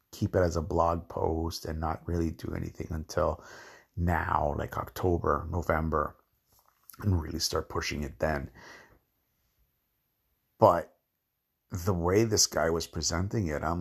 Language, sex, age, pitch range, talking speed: English, male, 50-69, 85-105 Hz, 135 wpm